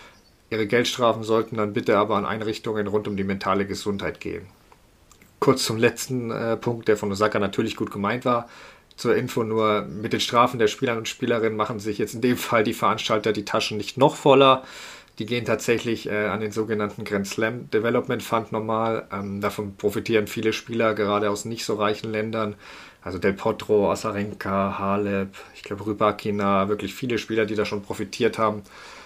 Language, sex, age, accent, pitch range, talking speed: German, male, 40-59, German, 105-120 Hz, 180 wpm